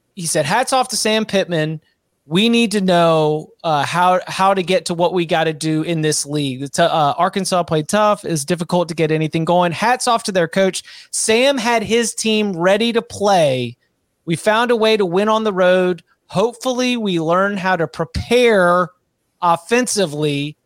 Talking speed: 185 wpm